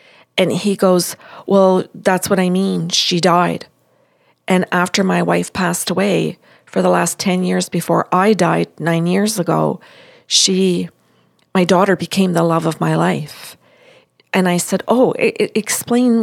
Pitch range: 175-210 Hz